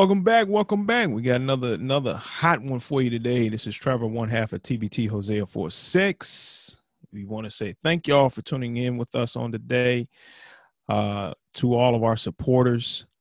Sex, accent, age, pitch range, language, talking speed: male, American, 30-49, 105-135 Hz, English, 200 wpm